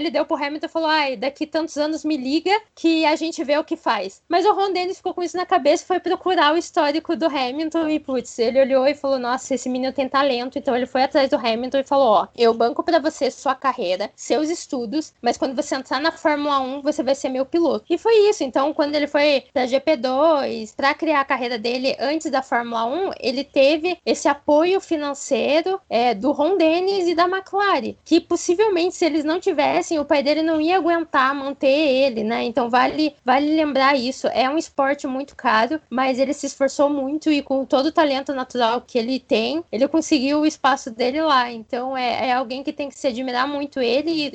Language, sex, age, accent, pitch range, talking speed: Portuguese, female, 10-29, Brazilian, 270-325 Hz, 220 wpm